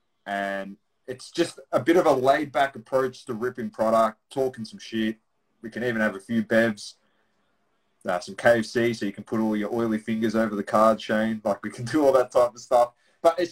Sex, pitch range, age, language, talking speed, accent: male, 105-130 Hz, 20-39, English, 210 wpm, Australian